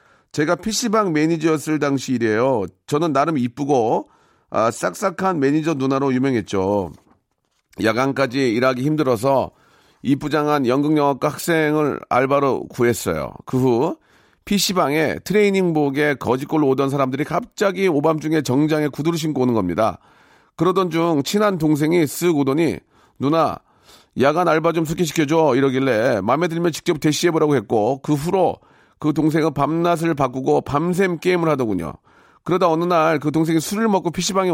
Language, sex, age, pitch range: Korean, male, 40-59, 135-170 Hz